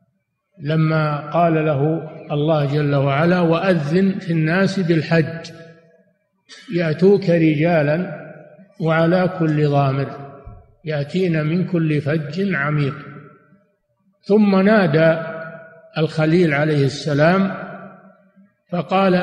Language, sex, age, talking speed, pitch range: Arabic, male, 50-69, 80 wpm, 155-190 Hz